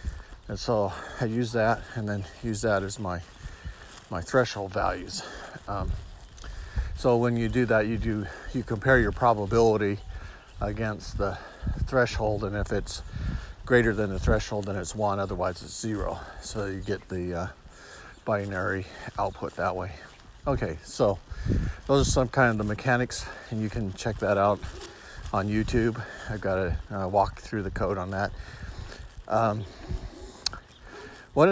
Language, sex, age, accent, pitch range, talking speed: English, male, 50-69, American, 95-115 Hz, 150 wpm